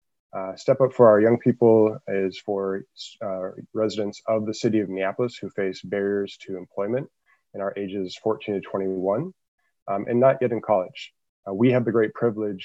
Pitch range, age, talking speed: 100-115 Hz, 20-39, 185 wpm